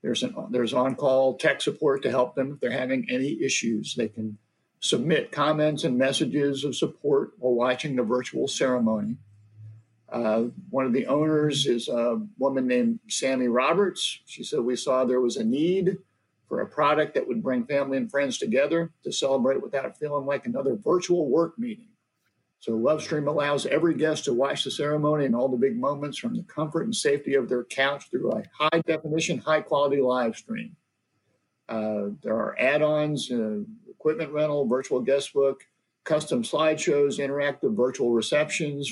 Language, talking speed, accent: English, 165 wpm, American